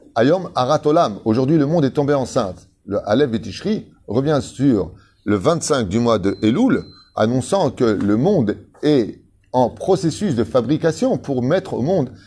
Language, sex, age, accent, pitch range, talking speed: French, male, 30-49, French, 105-145 Hz, 160 wpm